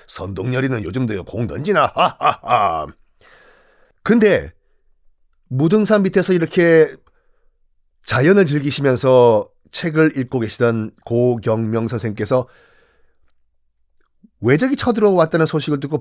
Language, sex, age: Korean, male, 40-59